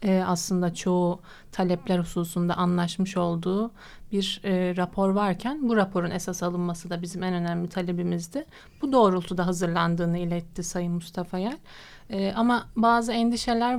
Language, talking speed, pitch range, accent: Turkish, 135 wpm, 185-215 Hz, native